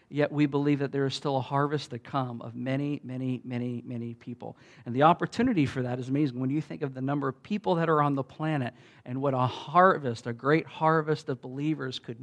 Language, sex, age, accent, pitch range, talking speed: English, male, 50-69, American, 135-180 Hz, 230 wpm